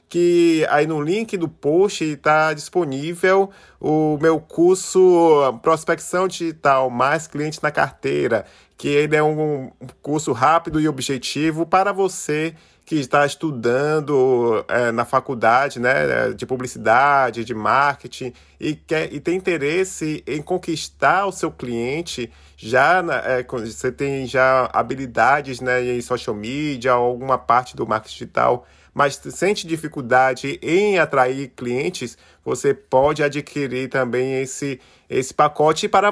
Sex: male